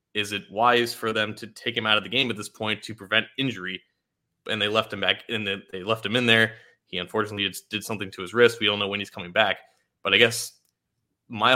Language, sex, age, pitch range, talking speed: English, male, 20-39, 100-115 Hz, 250 wpm